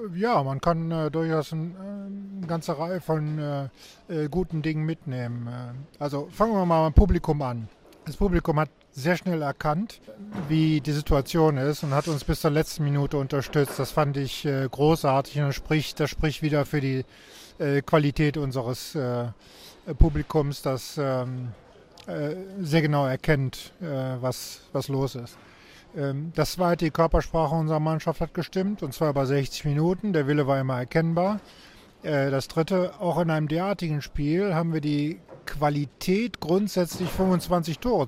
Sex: male